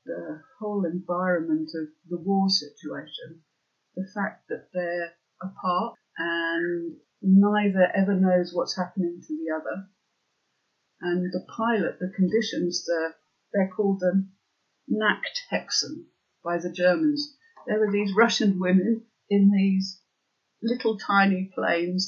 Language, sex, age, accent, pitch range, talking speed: English, female, 50-69, British, 175-210 Hz, 115 wpm